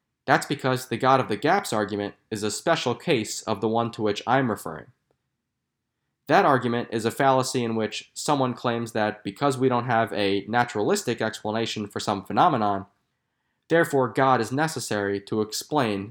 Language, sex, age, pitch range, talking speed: English, male, 20-39, 105-130 Hz, 170 wpm